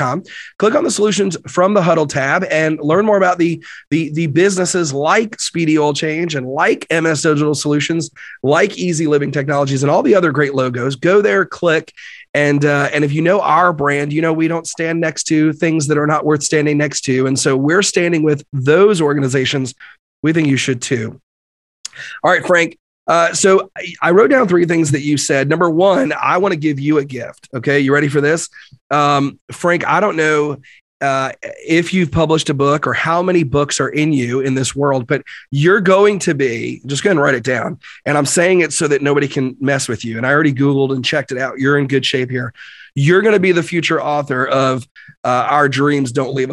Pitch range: 135-165 Hz